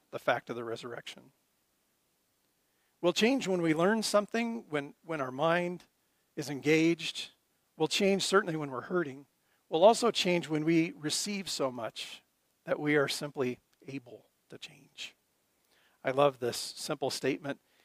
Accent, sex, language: American, male, English